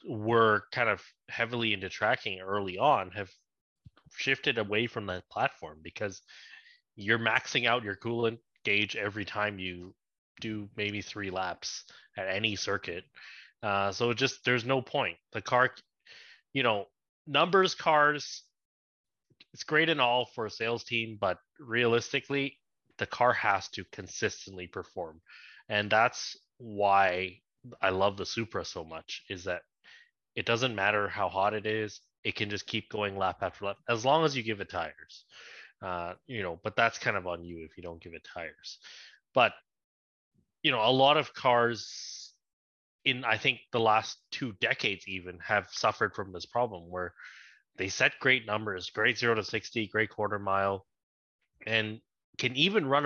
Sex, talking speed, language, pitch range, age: male, 160 wpm, English, 100-120 Hz, 30-49